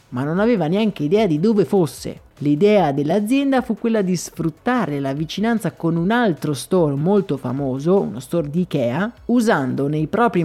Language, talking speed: Italian, 165 wpm